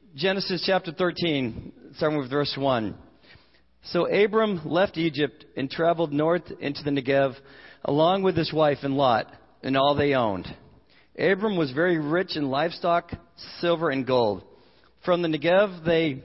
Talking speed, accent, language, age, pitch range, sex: 150 wpm, American, English, 50-69, 135-170 Hz, male